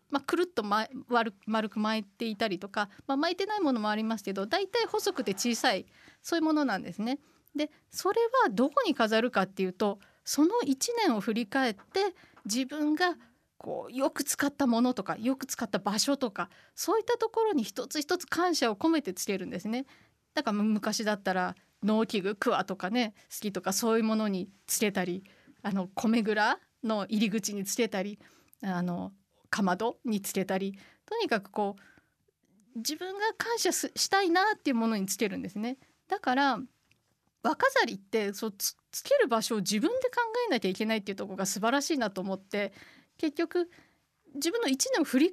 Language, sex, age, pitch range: Japanese, female, 20-39, 205-295 Hz